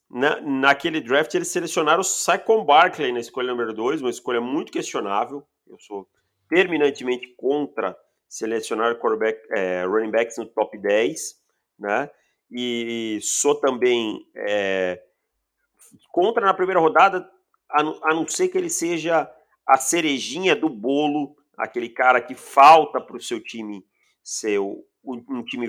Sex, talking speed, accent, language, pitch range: male, 140 wpm, Brazilian, Portuguese, 120-180 Hz